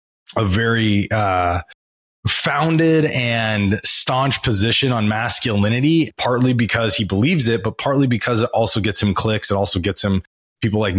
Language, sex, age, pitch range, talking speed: English, male, 20-39, 105-130 Hz, 155 wpm